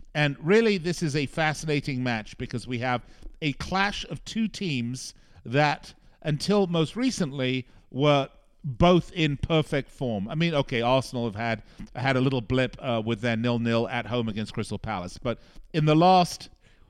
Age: 50-69